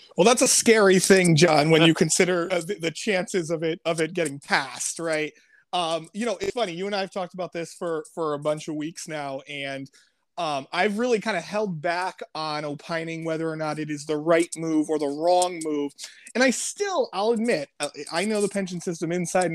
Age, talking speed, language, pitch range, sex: 30-49, 215 wpm, English, 155-190 Hz, male